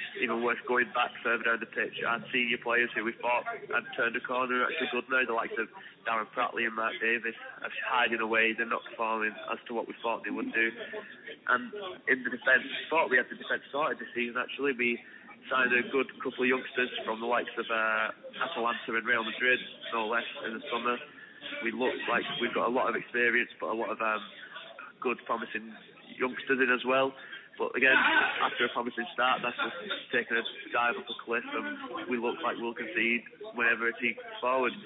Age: 20-39